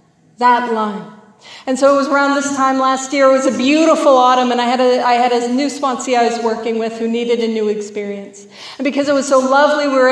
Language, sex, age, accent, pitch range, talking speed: English, female, 40-59, American, 230-280 Hz, 250 wpm